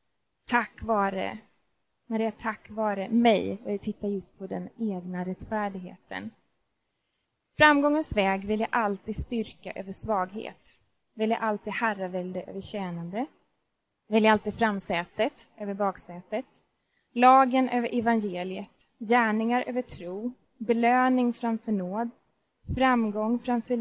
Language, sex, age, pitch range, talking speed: Swedish, female, 20-39, 200-245 Hz, 115 wpm